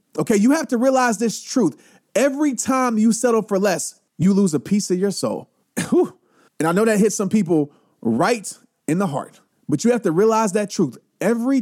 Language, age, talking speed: English, 30-49, 200 wpm